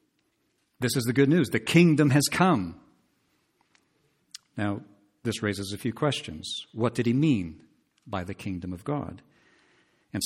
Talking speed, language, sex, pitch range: 145 wpm, English, male, 100-120 Hz